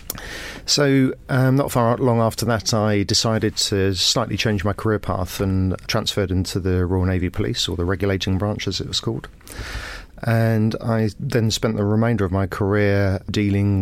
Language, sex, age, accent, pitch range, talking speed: English, male, 40-59, British, 100-115 Hz, 175 wpm